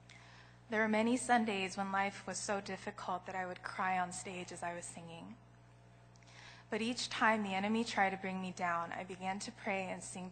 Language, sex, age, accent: Korean, female, 20-39, American